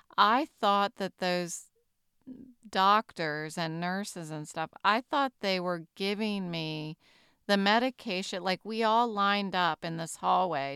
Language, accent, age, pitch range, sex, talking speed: English, American, 40-59, 170-205 Hz, female, 140 wpm